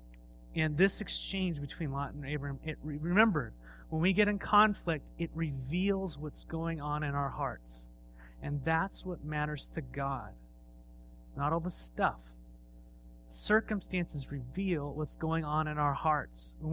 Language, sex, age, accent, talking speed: English, male, 30-49, American, 145 wpm